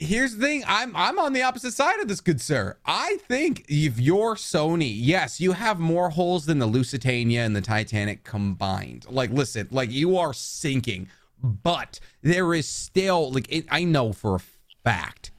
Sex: male